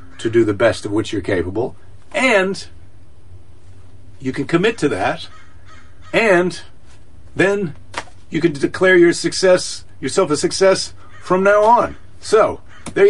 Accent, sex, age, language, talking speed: American, male, 50-69, English, 135 wpm